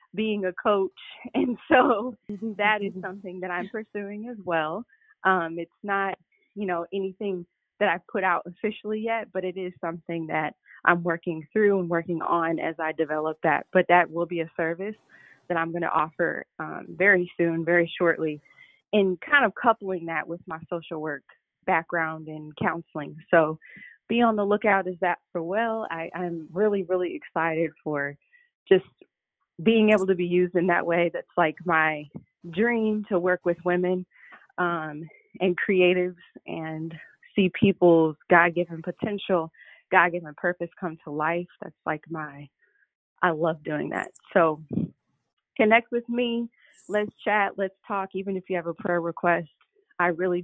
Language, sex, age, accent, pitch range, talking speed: English, female, 20-39, American, 165-200 Hz, 160 wpm